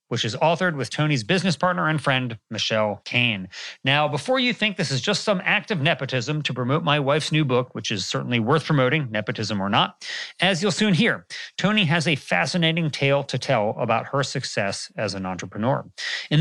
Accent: American